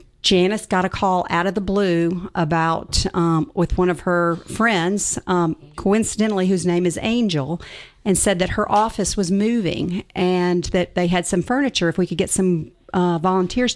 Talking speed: 180 wpm